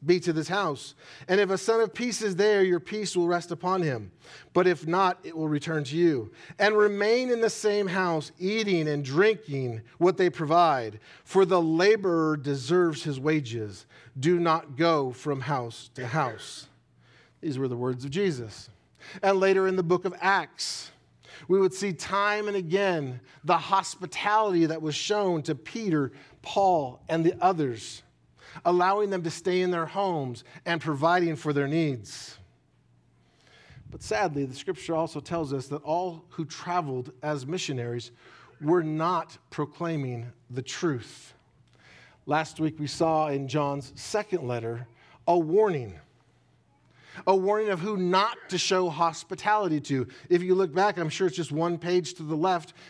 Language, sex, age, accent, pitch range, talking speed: English, male, 40-59, American, 145-185 Hz, 160 wpm